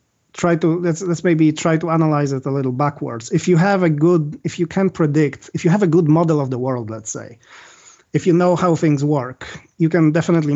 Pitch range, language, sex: 135-165 Hz, English, male